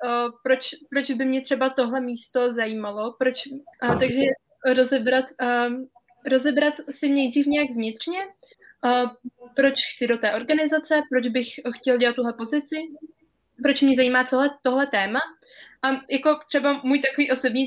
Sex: female